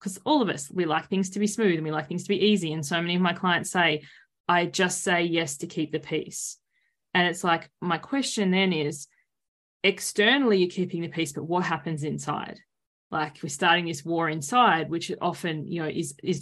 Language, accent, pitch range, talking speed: English, Australian, 170-215 Hz, 220 wpm